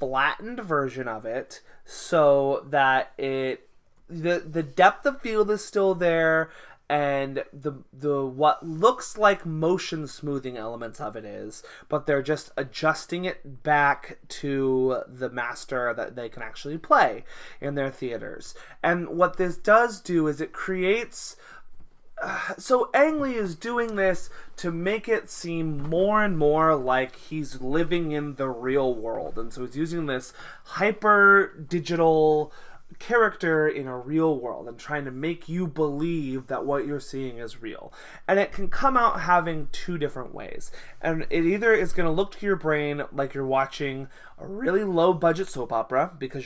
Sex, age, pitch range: male, 20-39, 135-180 Hz